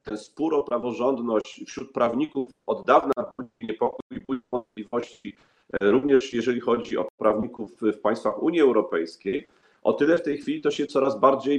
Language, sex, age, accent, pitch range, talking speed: Polish, male, 40-59, native, 110-135 Hz, 145 wpm